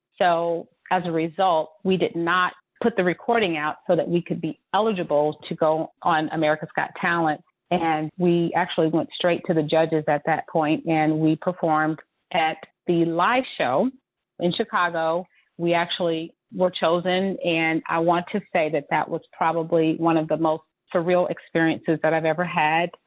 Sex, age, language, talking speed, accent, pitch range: female, 40-59, English, 170 wpm, American, 160-180 Hz